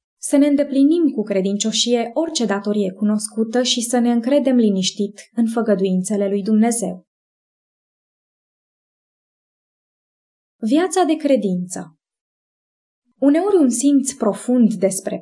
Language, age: English, 20-39